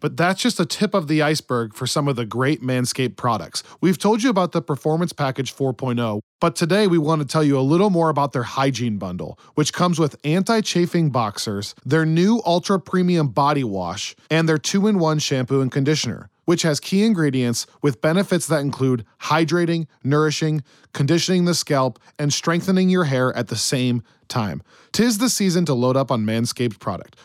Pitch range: 120-165 Hz